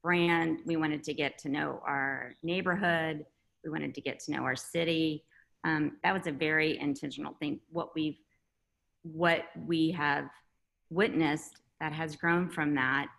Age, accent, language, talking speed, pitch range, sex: 30-49, American, English, 160 wpm, 145-165 Hz, female